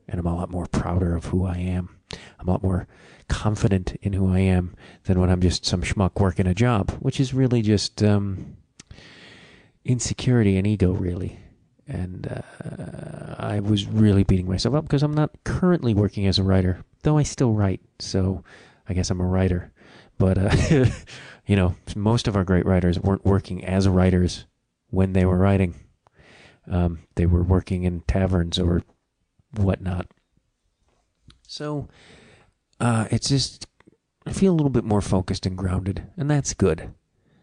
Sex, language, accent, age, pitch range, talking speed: male, English, American, 40-59, 90-110 Hz, 170 wpm